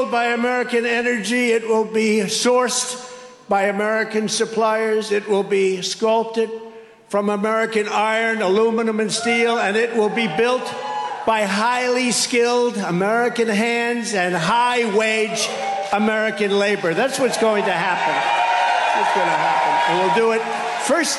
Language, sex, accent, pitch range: English, male, American, 175-225 Hz